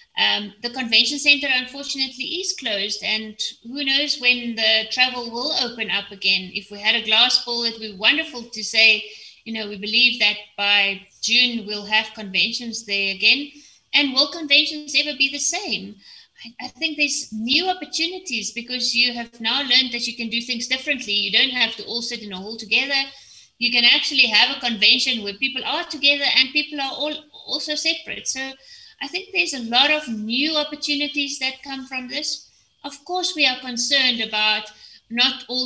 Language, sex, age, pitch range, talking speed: English, female, 30-49, 220-275 Hz, 190 wpm